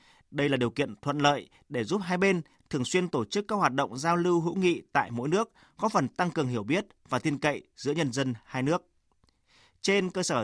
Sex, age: male, 30-49